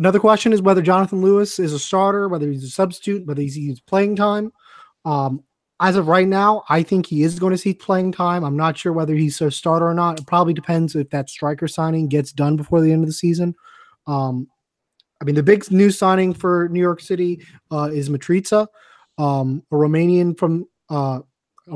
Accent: American